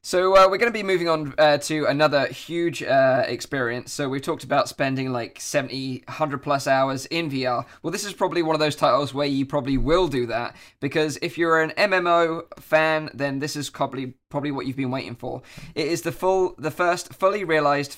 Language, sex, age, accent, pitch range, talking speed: English, male, 20-39, British, 135-165 Hz, 215 wpm